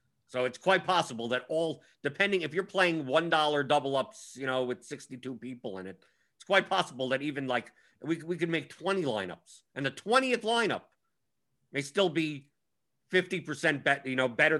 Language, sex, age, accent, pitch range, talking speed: English, male, 50-69, American, 125-165 Hz, 180 wpm